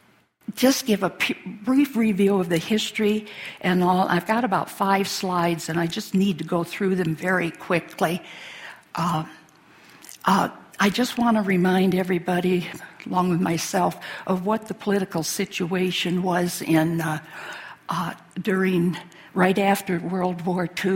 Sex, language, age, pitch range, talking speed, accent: female, English, 60-79, 175-195 Hz, 145 wpm, American